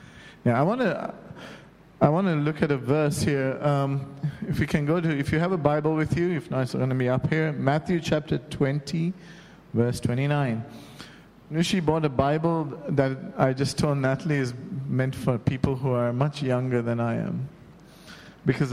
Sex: male